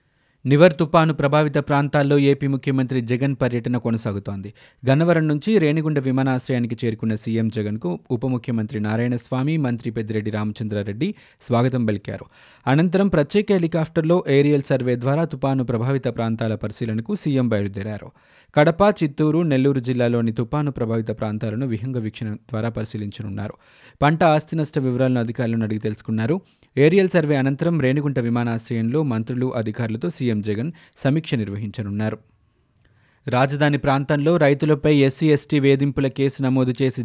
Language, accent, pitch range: Telugu, native, 115-150 Hz